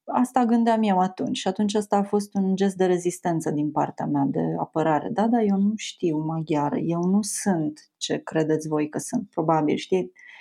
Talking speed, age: 195 wpm, 30-49